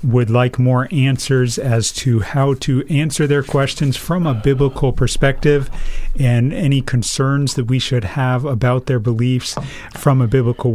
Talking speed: 155 wpm